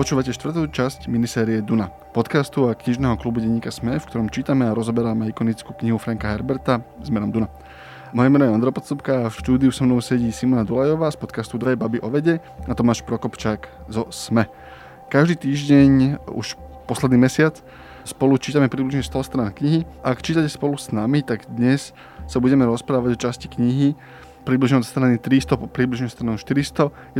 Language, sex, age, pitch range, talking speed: Slovak, male, 20-39, 110-130 Hz, 175 wpm